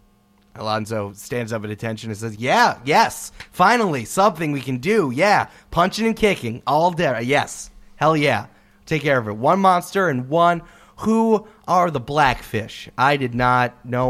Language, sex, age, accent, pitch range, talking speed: English, male, 30-49, American, 105-140 Hz, 165 wpm